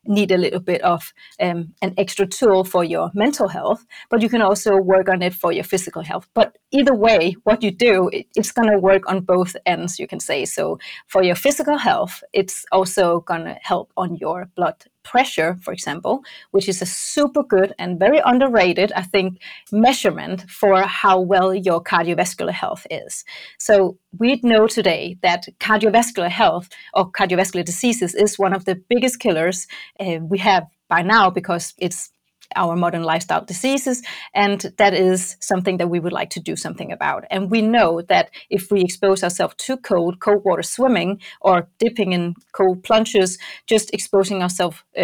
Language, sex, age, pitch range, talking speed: English, female, 30-49, 180-210 Hz, 175 wpm